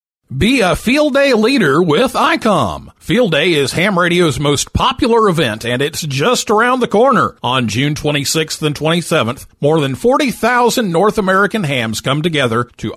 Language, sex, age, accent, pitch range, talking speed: English, male, 50-69, American, 140-210 Hz, 160 wpm